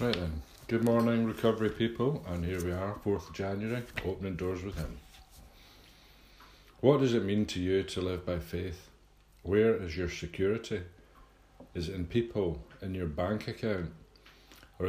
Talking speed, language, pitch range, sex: 155 wpm, English, 85-100 Hz, male